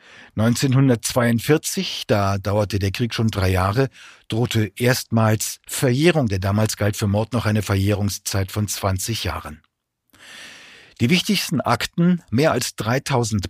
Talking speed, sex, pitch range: 125 wpm, male, 100-130 Hz